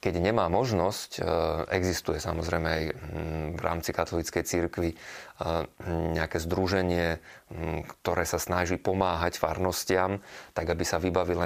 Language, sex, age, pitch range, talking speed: Slovak, male, 30-49, 85-90 Hz, 110 wpm